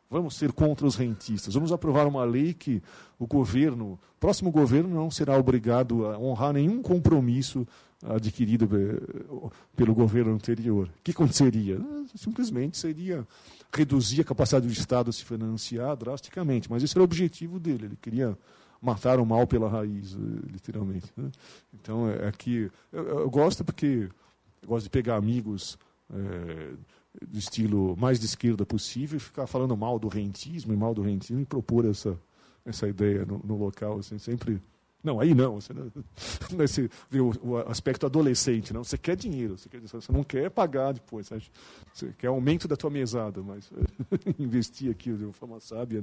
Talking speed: 165 wpm